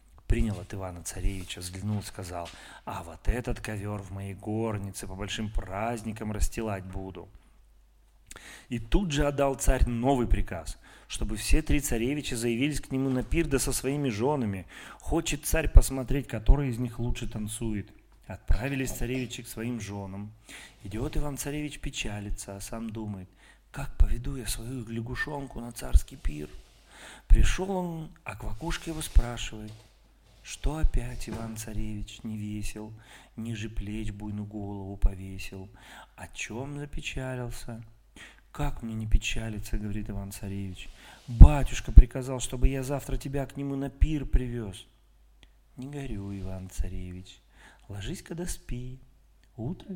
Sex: male